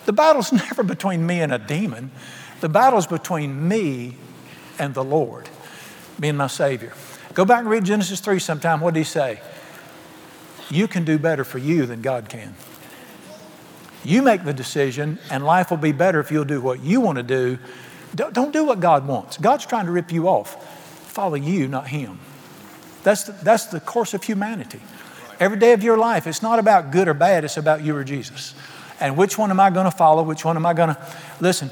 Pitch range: 140-185 Hz